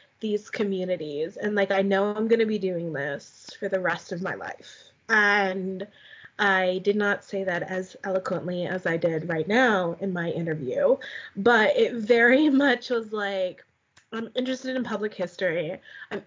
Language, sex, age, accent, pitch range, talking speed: English, female, 20-39, American, 185-220 Hz, 165 wpm